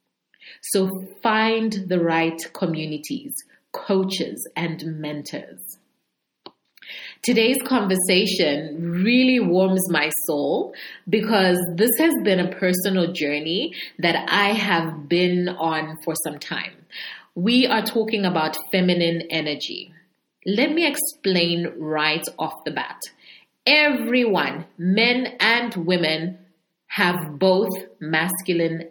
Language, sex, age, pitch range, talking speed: English, female, 30-49, 165-210 Hz, 100 wpm